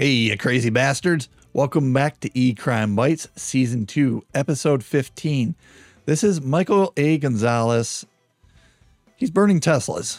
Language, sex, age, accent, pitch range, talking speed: English, male, 30-49, American, 110-145 Hz, 120 wpm